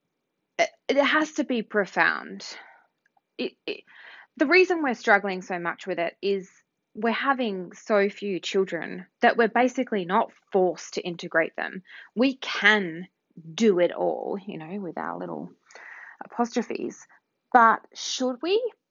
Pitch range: 195-300 Hz